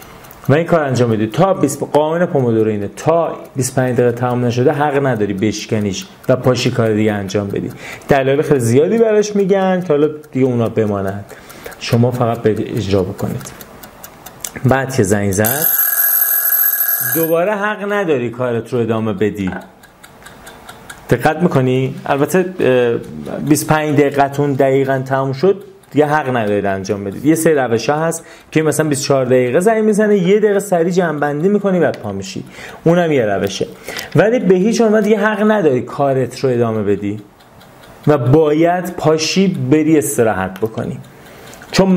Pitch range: 115-165 Hz